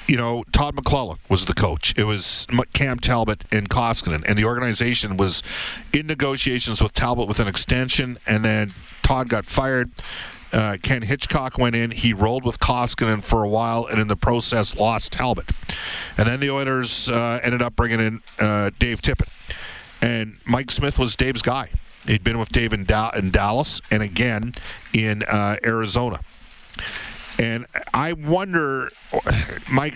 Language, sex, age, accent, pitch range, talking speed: English, male, 50-69, American, 105-135 Hz, 160 wpm